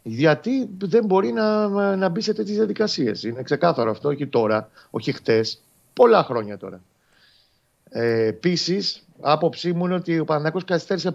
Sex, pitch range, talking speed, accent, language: male, 115-155 Hz, 145 wpm, native, Greek